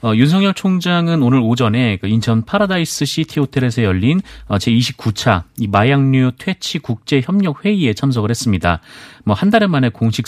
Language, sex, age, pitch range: Korean, male, 30-49, 105-140 Hz